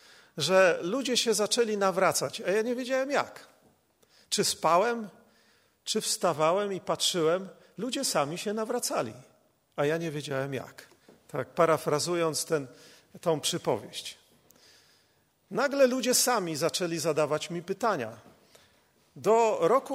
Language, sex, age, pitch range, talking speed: Polish, male, 40-59, 165-240 Hz, 115 wpm